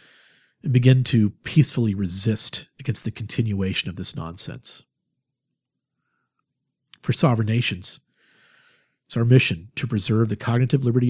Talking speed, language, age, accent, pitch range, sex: 120 wpm, English, 40-59, American, 95-120 Hz, male